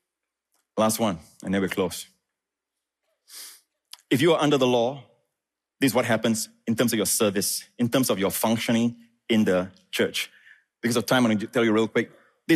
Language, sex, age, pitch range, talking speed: English, male, 30-49, 115-160 Hz, 195 wpm